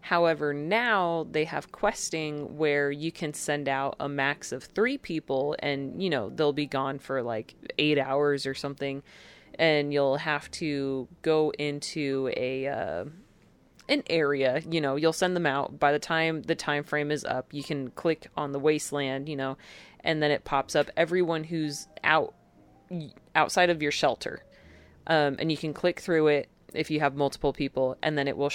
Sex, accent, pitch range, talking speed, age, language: female, American, 140-165 Hz, 185 wpm, 30-49, English